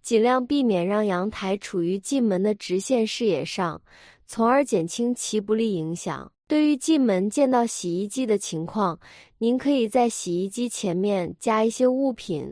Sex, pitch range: female, 190-255 Hz